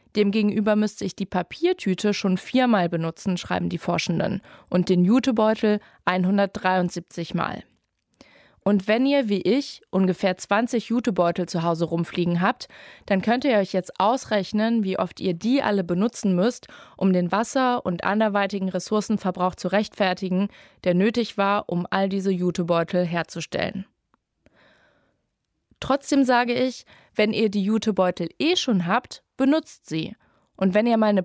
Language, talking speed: German, 140 wpm